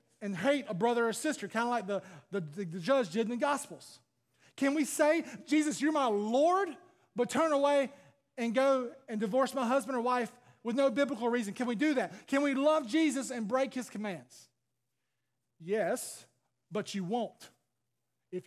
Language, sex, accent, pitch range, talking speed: English, male, American, 200-270 Hz, 185 wpm